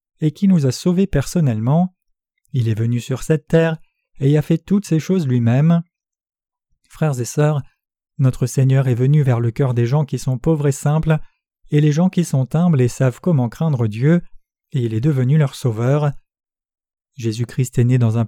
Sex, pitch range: male, 125-160 Hz